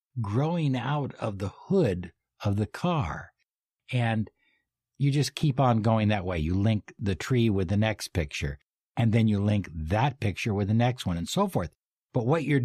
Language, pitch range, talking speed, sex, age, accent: English, 95-130 Hz, 190 wpm, male, 60-79, American